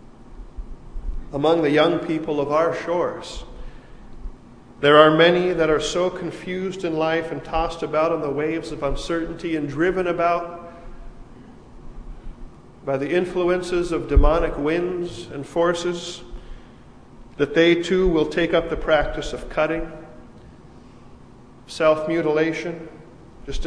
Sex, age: male, 50-69